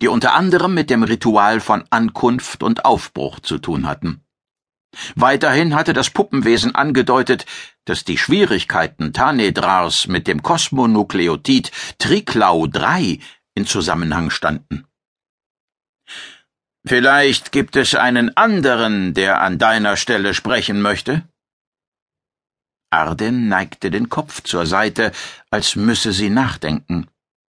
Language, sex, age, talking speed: German, male, 60-79, 110 wpm